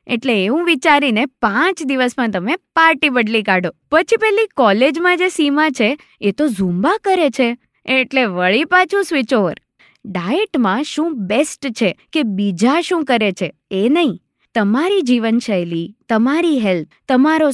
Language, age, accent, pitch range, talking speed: Gujarati, 20-39, native, 210-315 Hz, 140 wpm